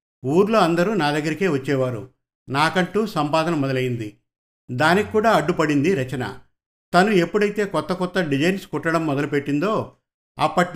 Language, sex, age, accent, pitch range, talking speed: Telugu, male, 50-69, native, 140-180 Hz, 110 wpm